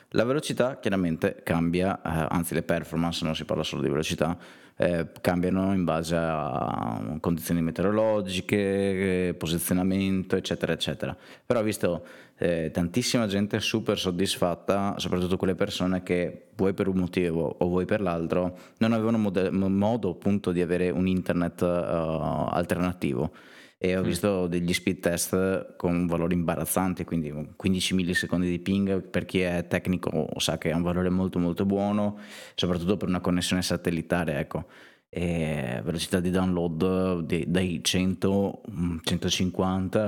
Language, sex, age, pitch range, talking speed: Italian, male, 20-39, 85-95 Hz, 140 wpm